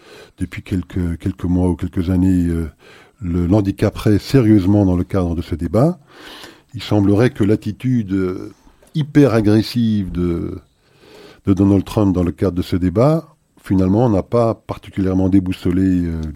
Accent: French